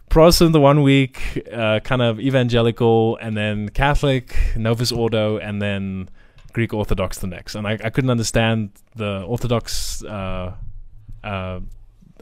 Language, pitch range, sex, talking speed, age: English, 105-130 Hz, male, 135 wpm, 20-39